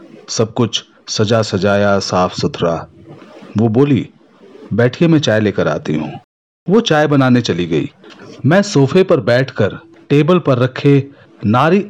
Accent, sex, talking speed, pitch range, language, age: native, male, 135 wpm, 110-140 Hz, Hindi, 40-59